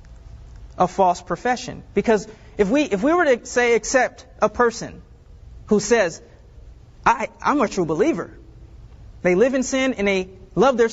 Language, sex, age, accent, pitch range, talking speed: English, male, 30-49, American, 185-265 Hz, 160 wpm